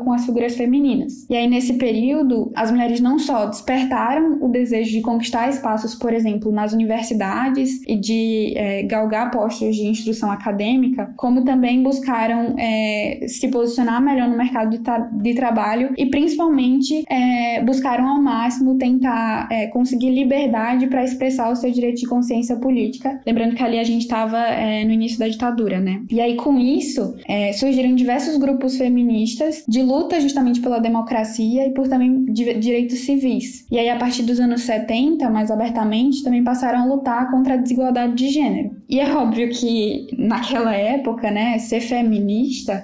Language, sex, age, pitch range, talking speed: Portuguese, female, 10-29, 225-260 Hz, 155 wpm